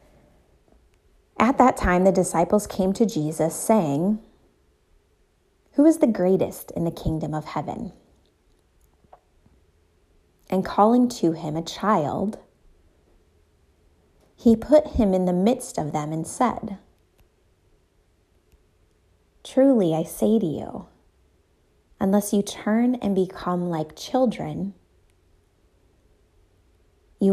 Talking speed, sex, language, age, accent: 105 wpm, female, English, 30-49, American